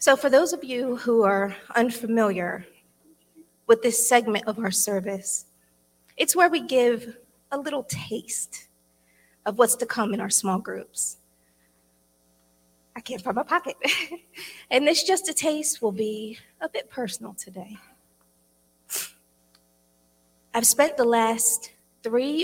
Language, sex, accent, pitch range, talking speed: English, female, American, 180-250 Hz, 135 wpm